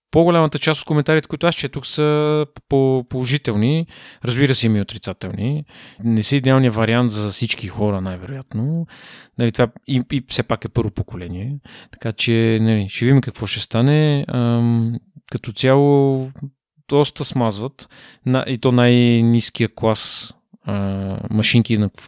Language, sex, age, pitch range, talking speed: Bulgarian, male, 30-49, 110-130 Hz, 140 wpm